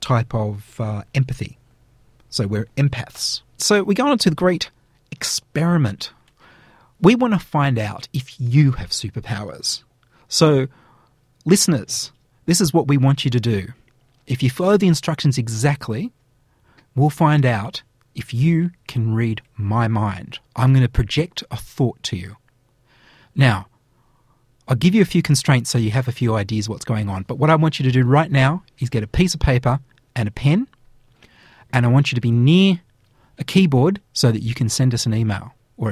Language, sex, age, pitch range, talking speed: English, male, 30-49, 120-145 Hz, 180 wpm